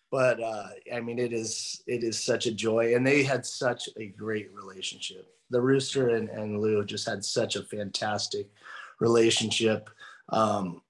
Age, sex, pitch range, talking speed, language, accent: 30-49, male, 120-140 Hz, 165 wpm, English, American